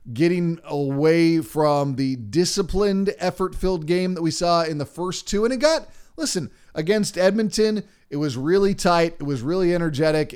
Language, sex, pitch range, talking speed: English, male, 140-180 Hz, 170 wpm